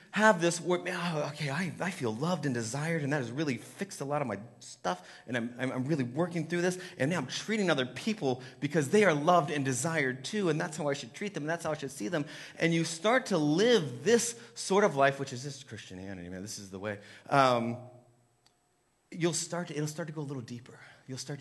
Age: 30-49